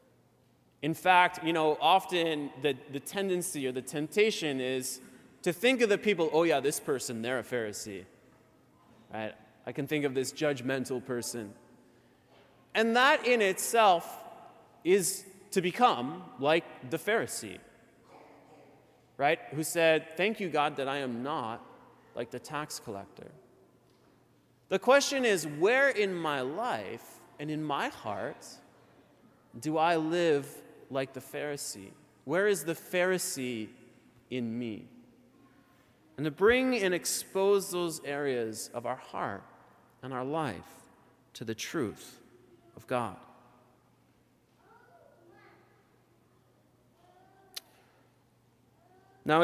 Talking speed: 120 wpm